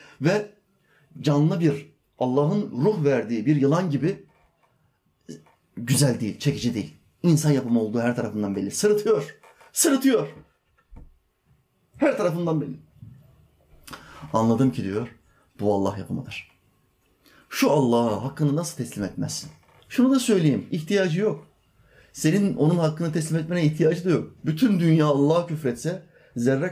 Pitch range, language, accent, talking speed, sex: 120-160 Hz, Turkish, native, 120 wpm, male